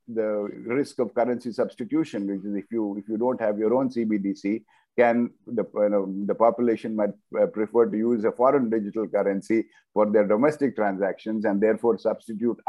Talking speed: 175 wpm